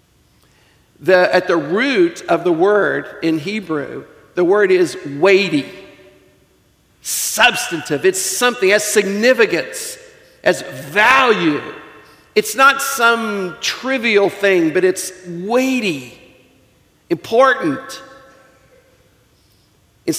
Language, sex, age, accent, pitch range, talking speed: English, male, 50-69, American, 175-265 Hz, 85 wpm